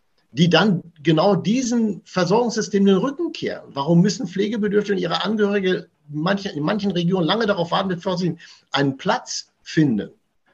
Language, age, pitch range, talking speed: German, 50-69, 120-175 Hz, 150 wpm